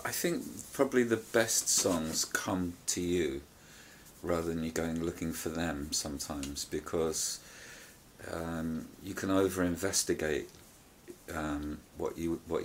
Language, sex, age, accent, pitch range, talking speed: English, male, 40-59, British, 80-90 Hz, 120 wpm